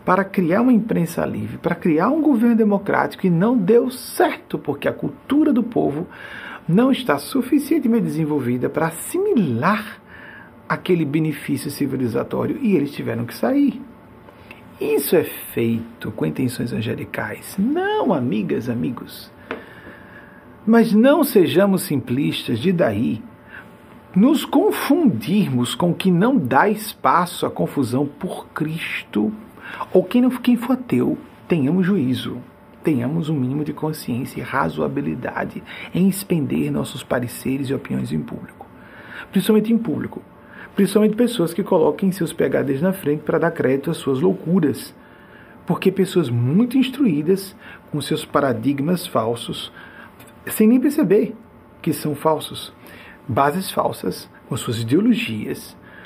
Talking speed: 125 wpm